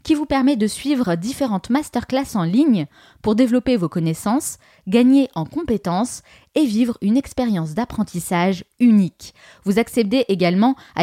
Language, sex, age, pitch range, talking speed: French, female, 20-39, 185-270 Hz, 140 wpm